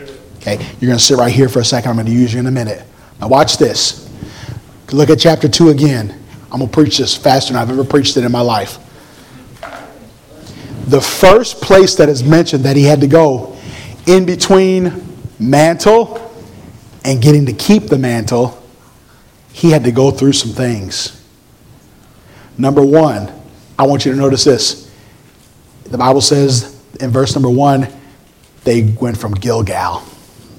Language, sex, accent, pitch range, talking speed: English, male, American, 120-155 Hz, 165 wpm